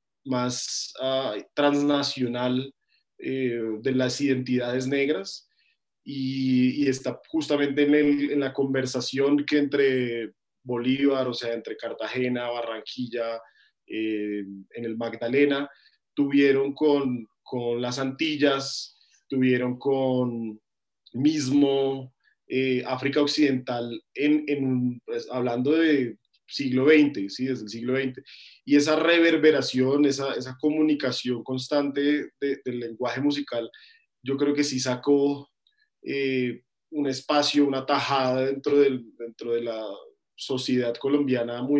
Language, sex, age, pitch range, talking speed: English, male, 20-39, 125-145 Hz, 115 wpm